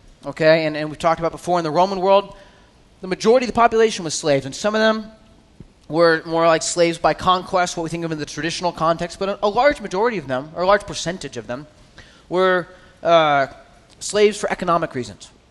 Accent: American